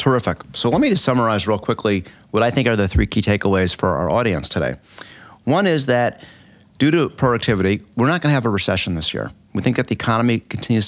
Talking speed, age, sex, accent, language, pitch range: 225 wpm, 30-49, male, American, English, 95-115 Hz